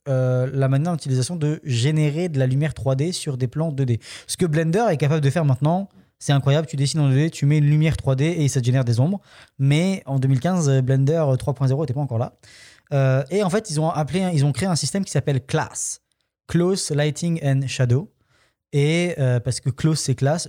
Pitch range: 130-160 Hz